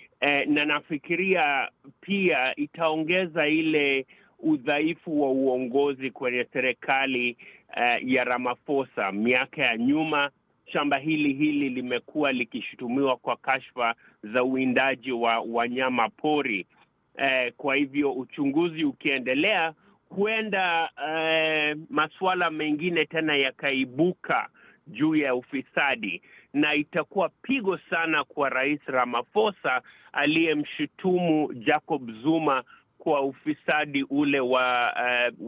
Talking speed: 90 wpm